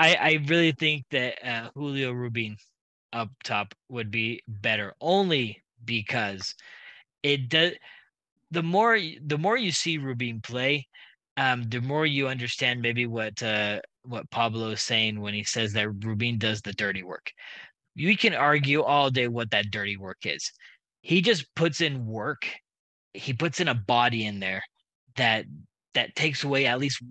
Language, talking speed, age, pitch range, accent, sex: English, 165 wpm, 20-39, 115-145 Hz, American, male